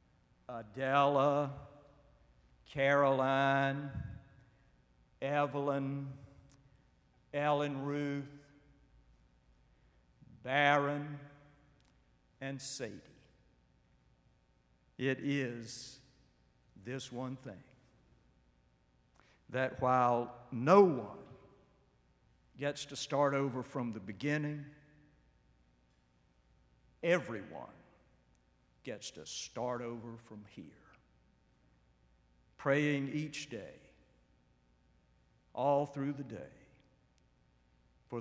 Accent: American